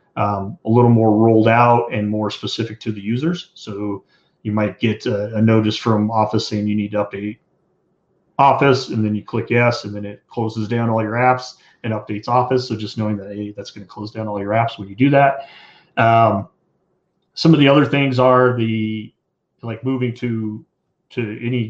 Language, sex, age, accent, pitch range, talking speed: English, male, 30-49, American, 105-125 Hz, 200 wpm